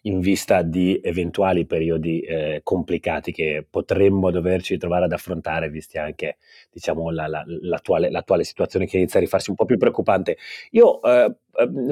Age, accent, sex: 30-49, native, male